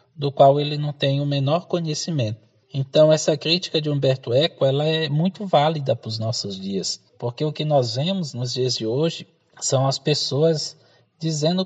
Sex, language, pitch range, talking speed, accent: male, Portuguese, 130-175 Hz, 180 wpm, Brazilian